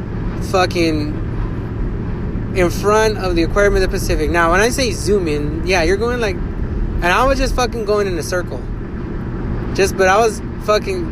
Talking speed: 180 wpm